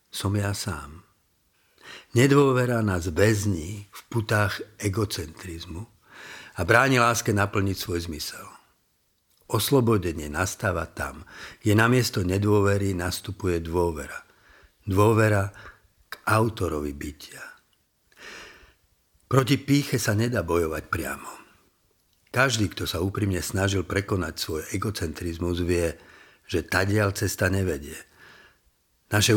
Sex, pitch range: male, 90-110 Hz